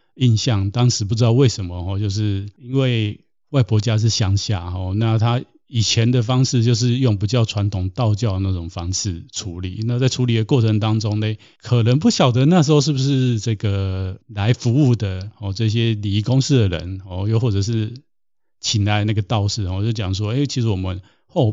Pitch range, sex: 100-120 Hz, male